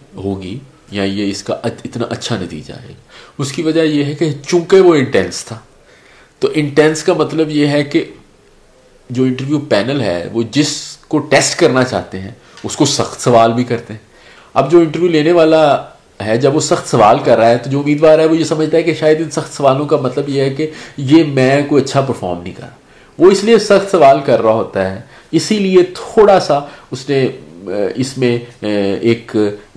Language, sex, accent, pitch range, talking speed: English, male, Indian, 105-150 Hz, 160 wpm